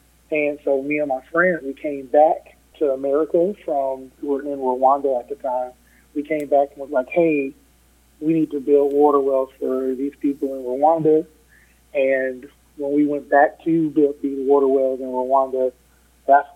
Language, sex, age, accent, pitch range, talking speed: English, male, 30-49, American, 135-150 Hz, 180 wpm